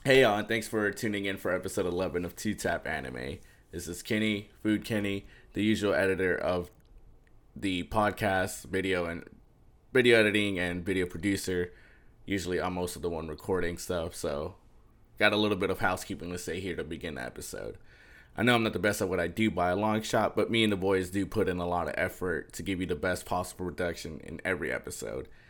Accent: American